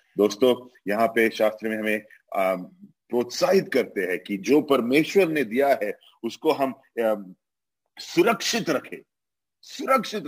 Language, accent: English, Indian